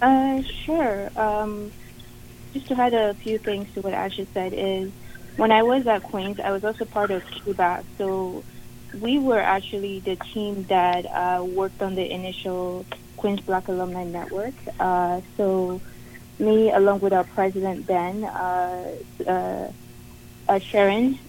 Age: 30-49